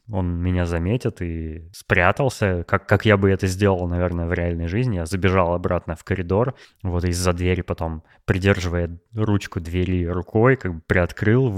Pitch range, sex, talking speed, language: 90-105 Hz, male, 160 wpm, Russian